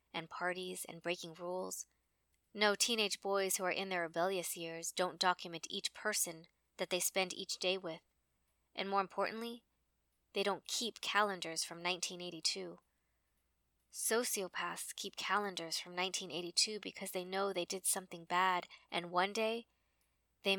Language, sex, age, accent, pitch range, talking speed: English, female, 20-39, American, 170-195 Hz, 145 wpm